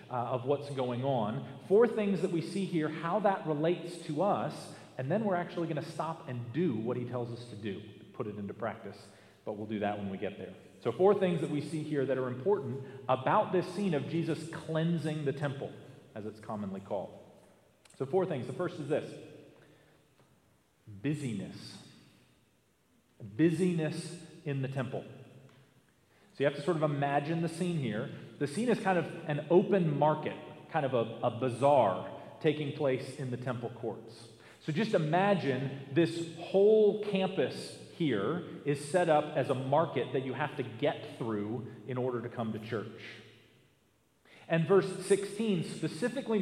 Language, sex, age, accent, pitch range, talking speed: English, male, 40-59, American, 130-175 Hz, 175 wpm